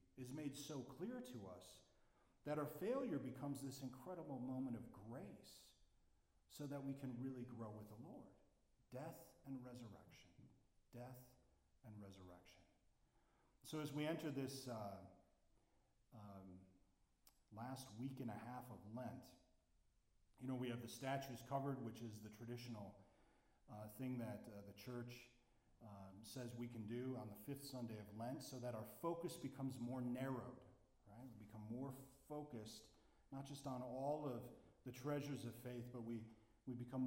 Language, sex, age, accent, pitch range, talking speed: English, male, 40-59, American, 105-130 Hz, 155 wpm